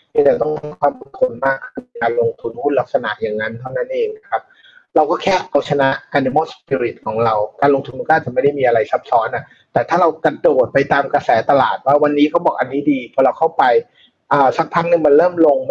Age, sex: 30-49, male